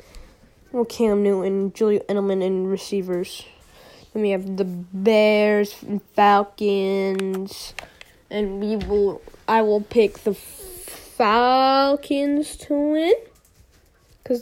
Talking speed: 110 wpm